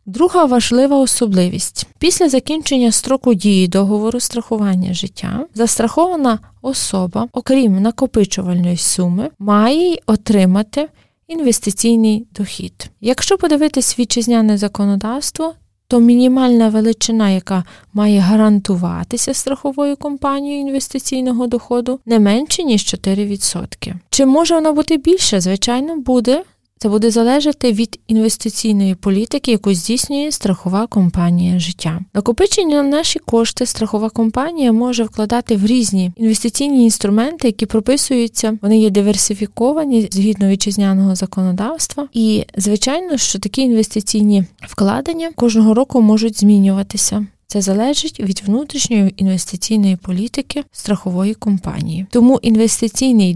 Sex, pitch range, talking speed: female, 200-260 Hz, 105 wpm